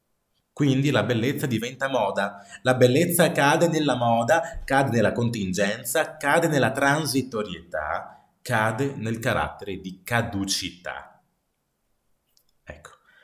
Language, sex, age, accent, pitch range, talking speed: Italian, male, 30-49, native, 105-160 Hz, 100 wpm